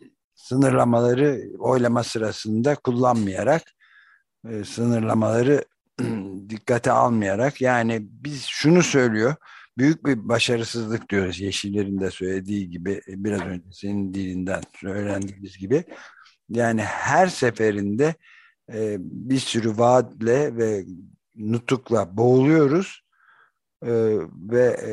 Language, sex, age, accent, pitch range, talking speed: Turkish, male, 60-79, native, 100-125 Hz, 85 wpm